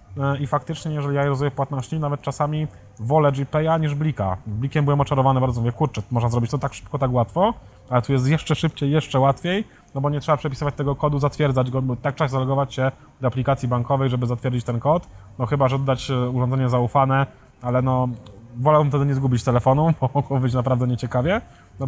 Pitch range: 120-140 Hz